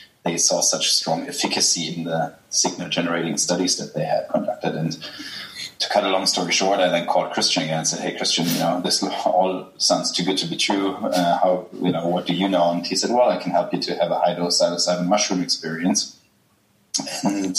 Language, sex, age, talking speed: English, male, 20-39, 220 wpm